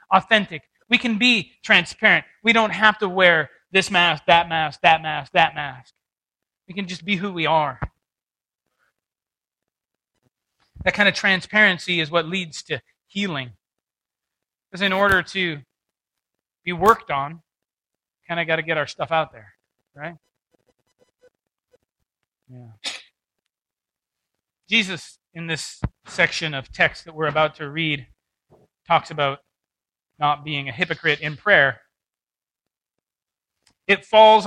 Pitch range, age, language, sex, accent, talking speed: 160-215 Hz, 30-49, English, male, American, 125 wpm